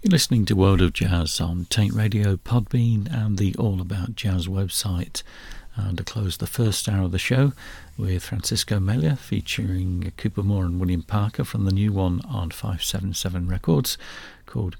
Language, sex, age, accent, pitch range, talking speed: English, male, 50-69, British, 90-115 Hz, 170 wpm